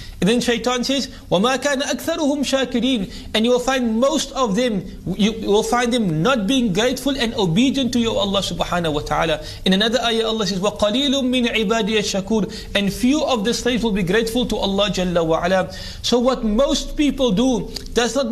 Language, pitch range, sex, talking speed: English, 195-245 Hz, male, 190 wpm